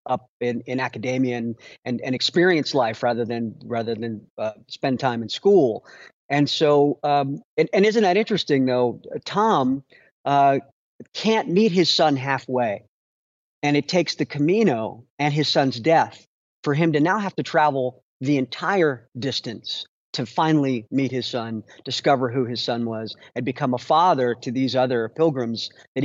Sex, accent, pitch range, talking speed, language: male, American, 120-150 Hz, 165 wpm, English